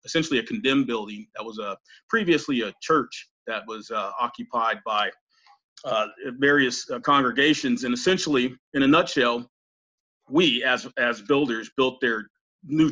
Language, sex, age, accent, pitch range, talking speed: English, male, 40-59, American, 115-150 Hz, 145 wpm